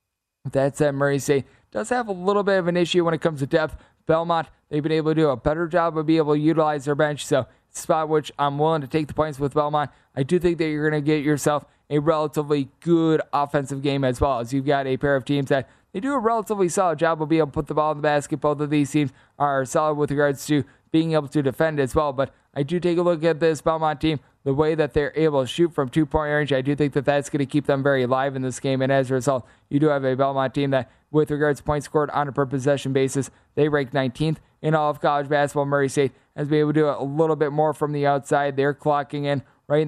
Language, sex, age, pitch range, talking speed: English, male, 20-39, 140-155 Hz, 270 wpm